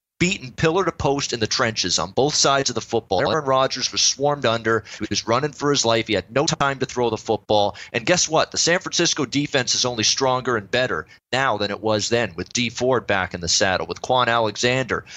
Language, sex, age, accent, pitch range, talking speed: English, male, 30-49, American, 110-135 Hz, 235 wpm